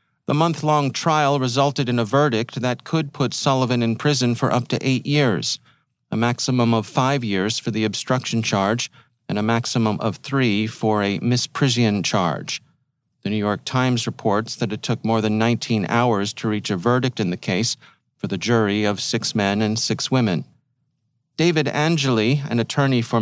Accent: American